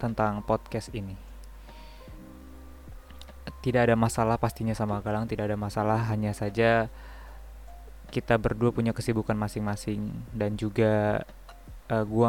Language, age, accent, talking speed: Indonesian, 20-39, native, 110 wpm